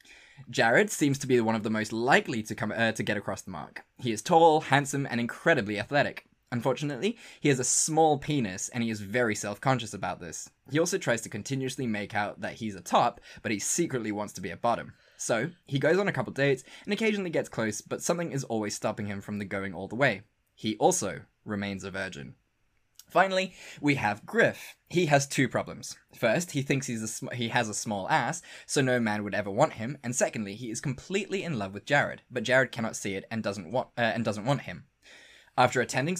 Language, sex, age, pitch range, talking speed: English, male, 10-29, 110-145 Hz, 220 wpm